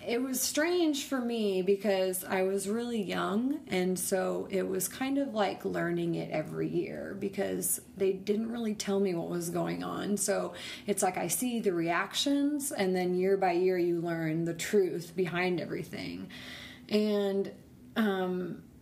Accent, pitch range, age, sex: American, 175-210 Hz, 30-49, female